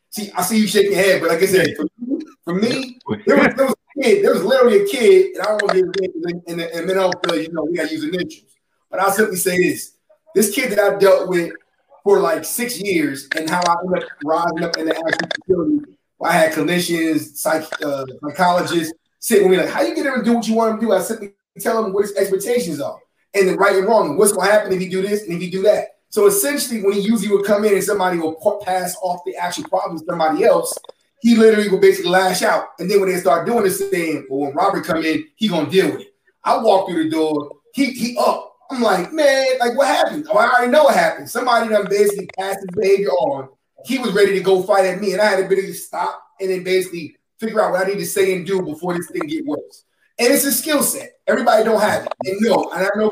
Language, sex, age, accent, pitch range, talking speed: English, male, 20-39, American, 180-245 Hz, 270 wpm